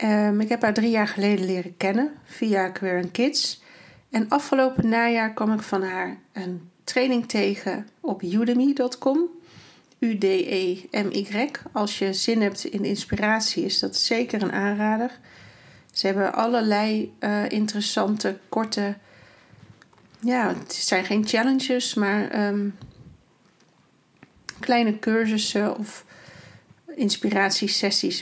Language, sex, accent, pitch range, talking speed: Dutch, female, Dutch, 195-230 Hz, 110 wpm